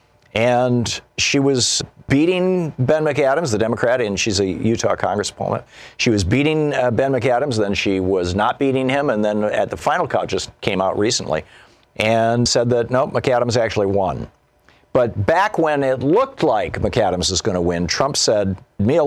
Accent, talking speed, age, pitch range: American, 180 wpm, 50-69, 100-135 Hz